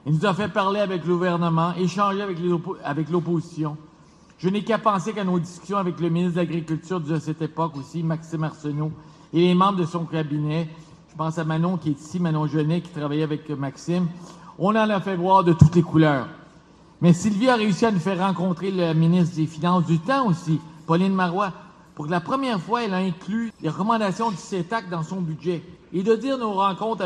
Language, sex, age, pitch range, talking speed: French, male, 50-69, 160-190 Hz, 215 wpm